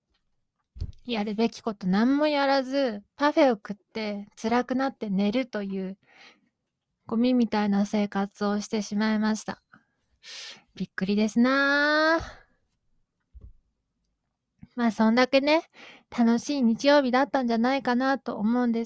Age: 20-39